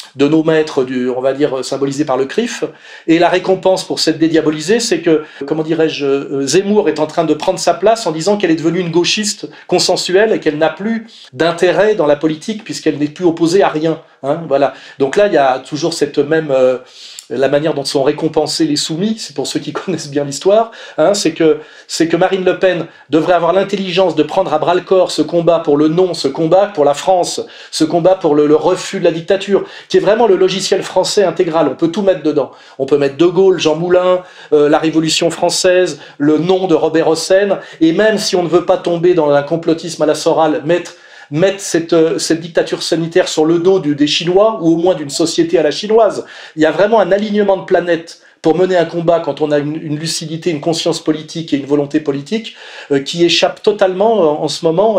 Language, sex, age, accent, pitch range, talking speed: French, male, 40-59, French, 150-185 Hz, 225 wpm